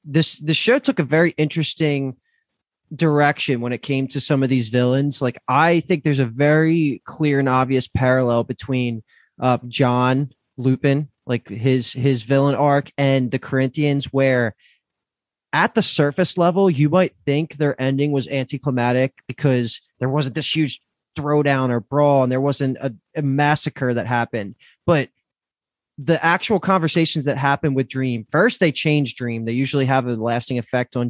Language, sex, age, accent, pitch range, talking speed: English, male, 20-39, American, 130-160 Hz, 165 wpm